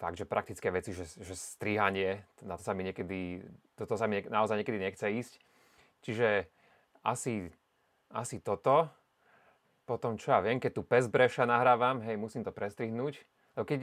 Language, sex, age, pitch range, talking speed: Slovak, male, 30-49, 95-125 Hz, 155 wpm